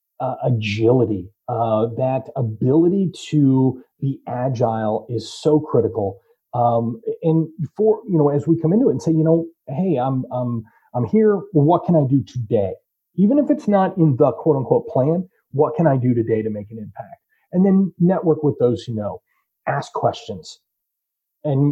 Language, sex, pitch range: English, male, 125-170 Hz